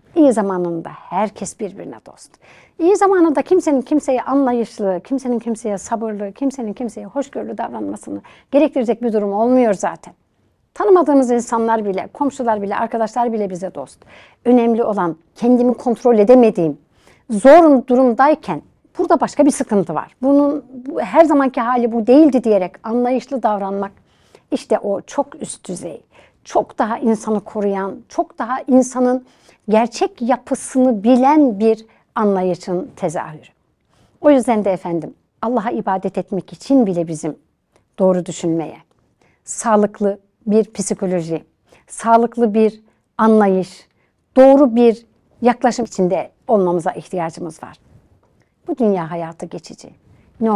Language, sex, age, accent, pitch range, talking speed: Turkish, female, 60-79, native, 200-255 Hz, 120 wpm